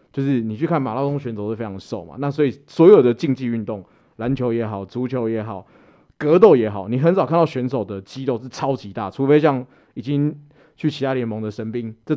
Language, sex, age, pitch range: Chinese, male, 20-39, 110-150 Hz